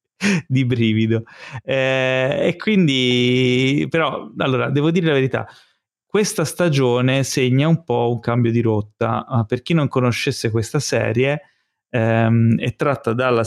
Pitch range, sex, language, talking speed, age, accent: 115-135 Hz, male, Italian, 135 wpm, 20-39, native